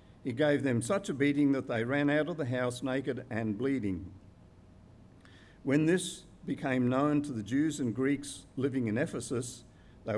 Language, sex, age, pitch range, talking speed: English, male, 50-69, 115-145 Hz, 170 wpm